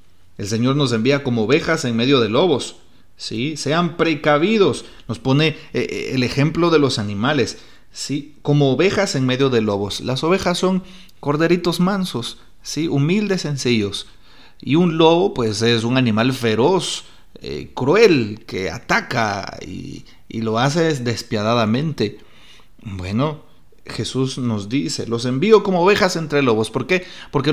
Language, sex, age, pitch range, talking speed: Spanish, male, 40-59, 115-150 Hz, 145 wpm